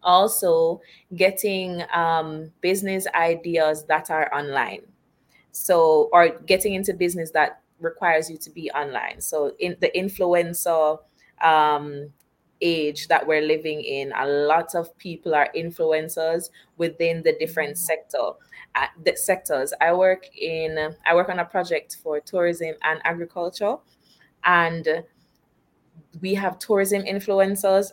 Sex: female